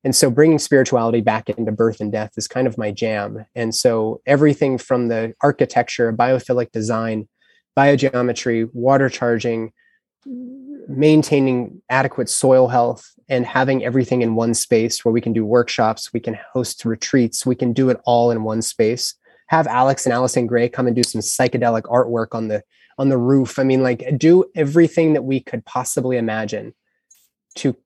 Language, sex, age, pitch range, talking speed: English, male, 20-39, 115-135 Hz, 170 wpm